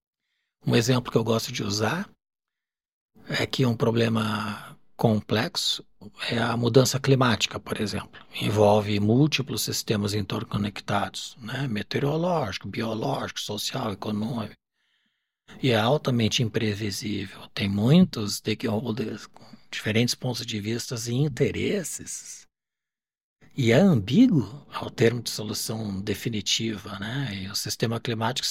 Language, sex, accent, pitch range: Portuguese, male, Brazilian, 105-135 Hz